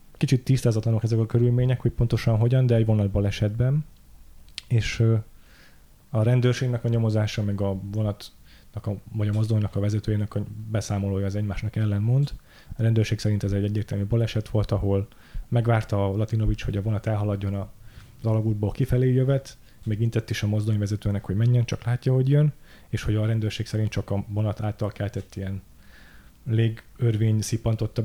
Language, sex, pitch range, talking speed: Hungarian, male, 105-115 Hz, 160 wpm